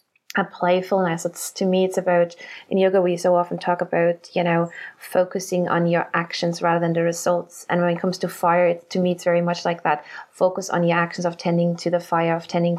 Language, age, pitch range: English, 20-39, 165-180 Hz